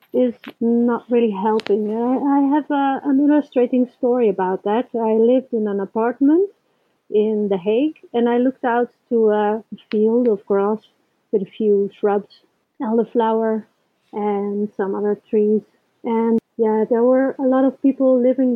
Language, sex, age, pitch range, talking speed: English, female, 30-49, 215-245 Hz, 150 wpm